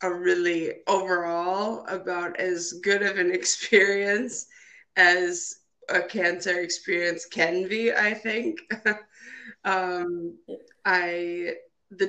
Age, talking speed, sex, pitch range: 20-39, 100 wpm, female, 170-210 Hz